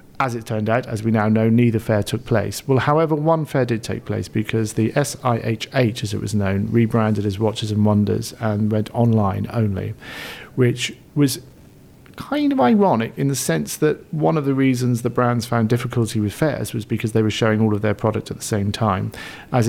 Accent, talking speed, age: British, 205 wpm, 40-59